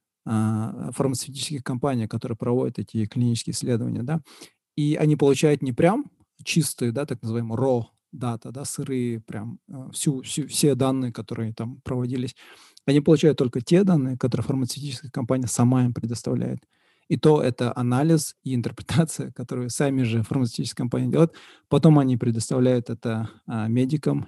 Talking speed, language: 140 wpm, Russian